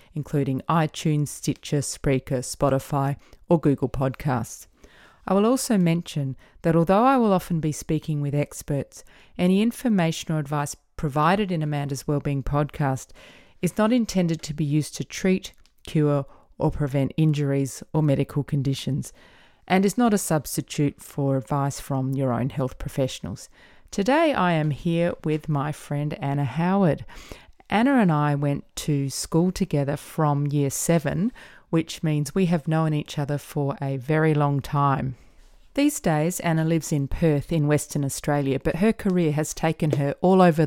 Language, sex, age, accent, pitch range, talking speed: English, female, 30-49, Australian, 140-170 Hz, 155 wpm